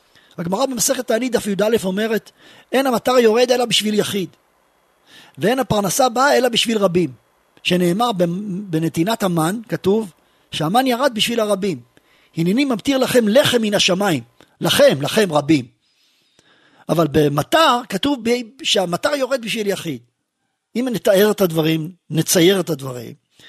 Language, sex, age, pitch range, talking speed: Hebrew, male, 40-59, 170-250 Hz, 125 wpm